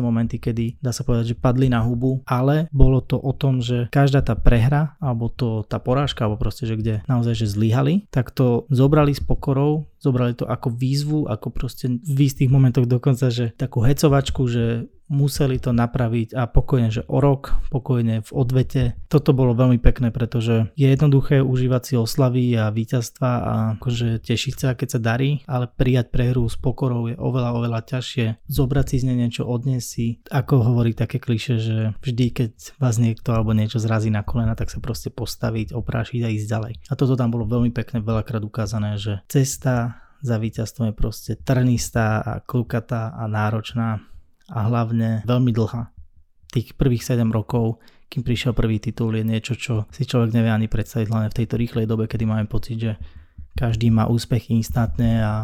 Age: 20-39